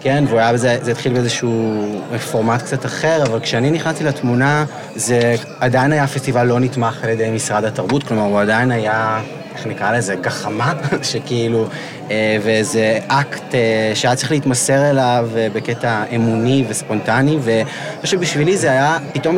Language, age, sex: Hebrew, 30-49, male